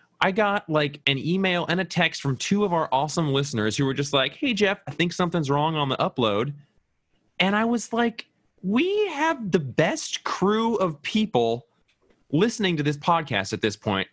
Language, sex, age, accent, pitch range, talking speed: English, male, 20-39, American, 105-165 Hz, 190 wpm